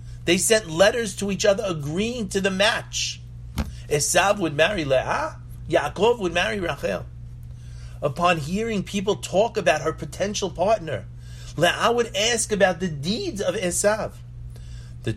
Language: English